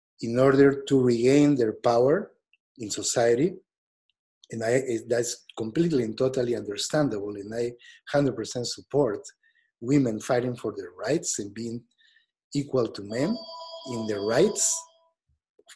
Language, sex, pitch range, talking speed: English, male, 115-145 Hz, 120 wpm